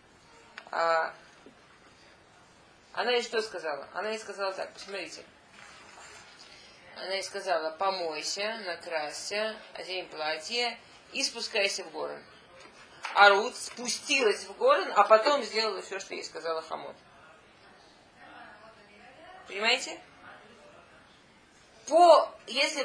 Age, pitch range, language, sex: 20-39, 185-230 Hz, Russian, female